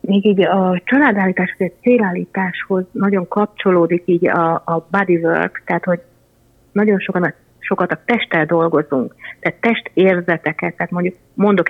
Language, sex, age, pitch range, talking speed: Hungarian, female, 30-49, 165-205 Hz, 135 wpm